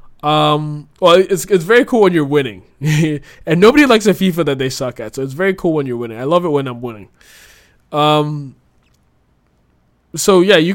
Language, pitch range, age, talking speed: English, 125-165 Hz, 20-39, 195 wpm